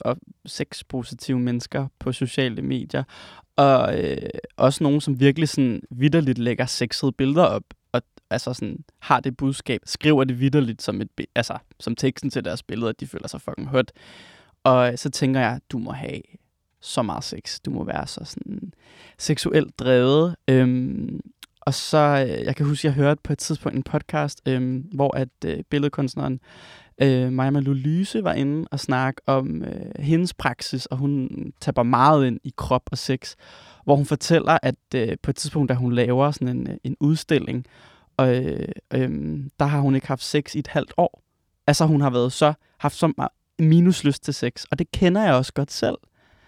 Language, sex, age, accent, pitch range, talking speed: Danish, male, 20-39, native, 125-145 Hz, 190 wpm